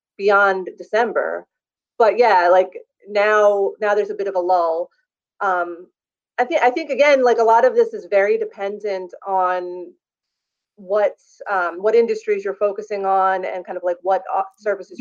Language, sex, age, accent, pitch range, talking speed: English, female, 30-49, American, 185-230 Hz, 165 wpm